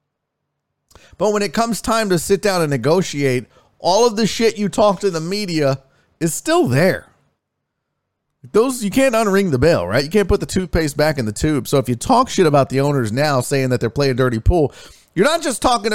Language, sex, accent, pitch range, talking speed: English, male, American, 100-165 Hz, 215 wpm